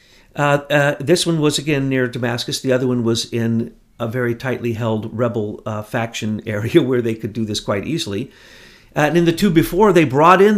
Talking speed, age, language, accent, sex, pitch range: 210 wpm, 50-69, English, American, male, 110-140 Hz